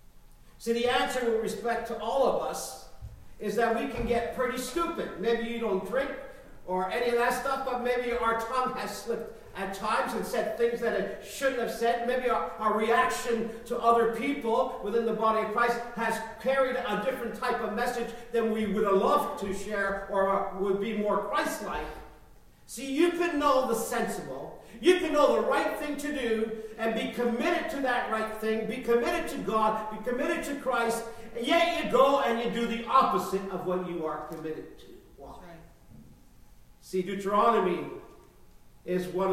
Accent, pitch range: American, 185-240 Hz